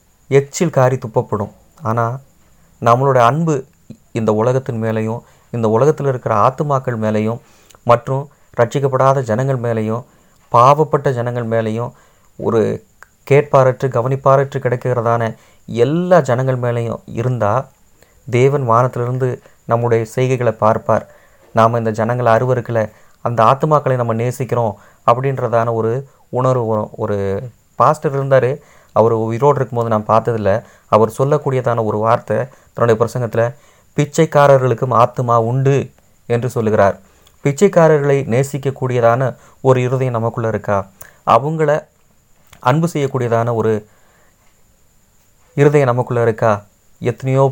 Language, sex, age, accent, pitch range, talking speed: Tamil, male, 30-49, native, 110-135 Hz, 100 wpm